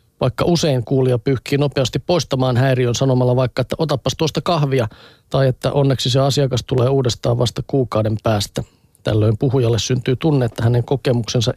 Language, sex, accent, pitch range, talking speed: Finnish, male, native, 120-145 Hz, 155 wpm